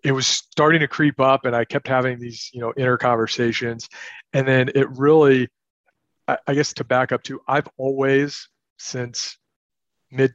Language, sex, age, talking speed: English, male, 40-59, 170 wpm